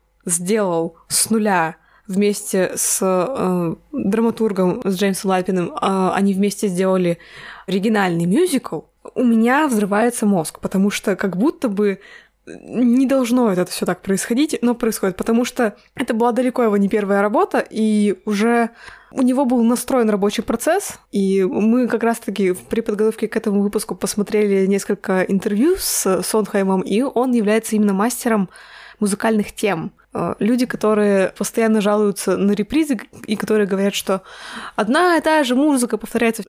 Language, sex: Russian, female